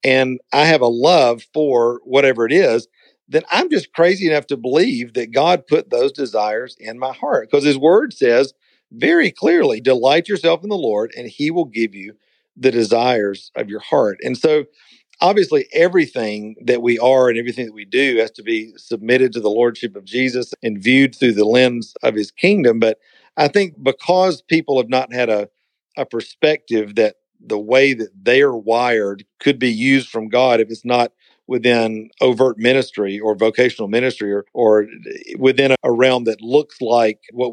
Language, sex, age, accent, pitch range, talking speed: English, male, 50-69, American, 115-145 Hz, 185 wpm